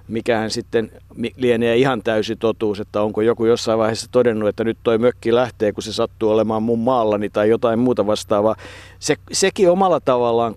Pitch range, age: 110-150 Hz, 50-69